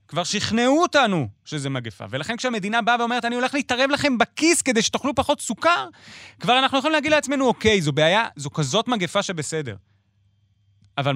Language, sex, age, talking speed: Hebrew, male, 30-49, 165 wpm